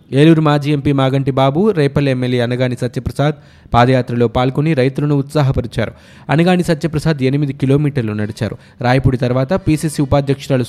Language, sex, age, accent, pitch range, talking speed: Telugu, male, 20-39, native, 120-150 Hz, 125 wpm